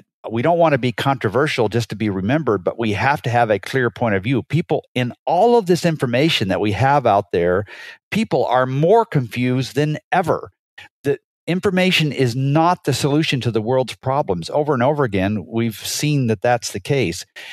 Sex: male